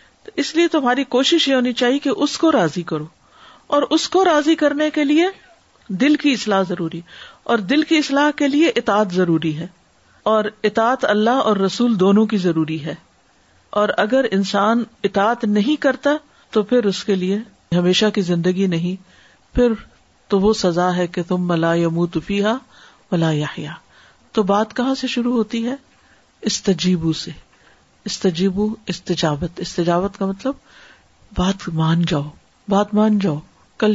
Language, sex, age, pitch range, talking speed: Urdu, female, 50-69, 180-255 Hz, 155 wpm